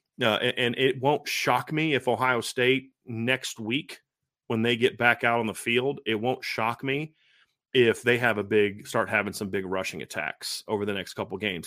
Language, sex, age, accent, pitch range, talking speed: English, male, 30-49, American, 105-125 Hz, 205 wpm